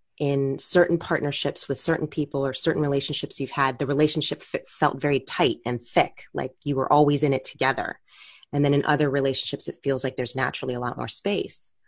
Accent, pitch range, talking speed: American, 135-155 Hz, 195 wpm